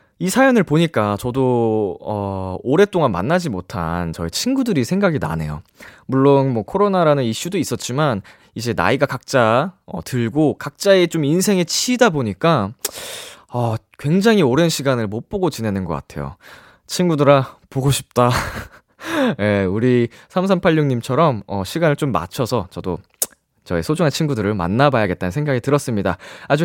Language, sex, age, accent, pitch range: Korean, male, 20-39, native, 110-175 Hz